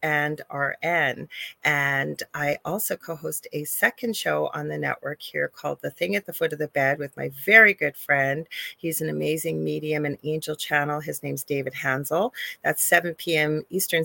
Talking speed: 180 wpm